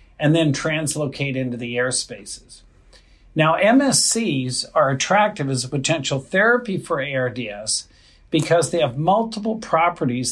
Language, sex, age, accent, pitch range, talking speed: English, male, 50-69, American, 135-165 Hz, 130 wpm